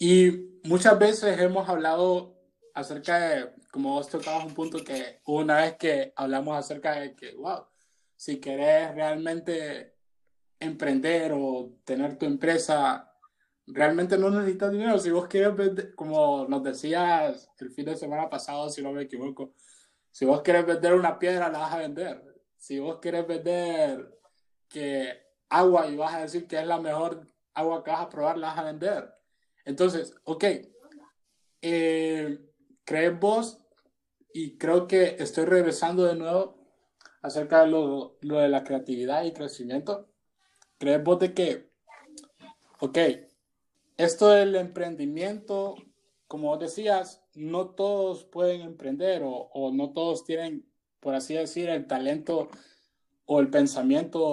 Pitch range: 150-190 Hz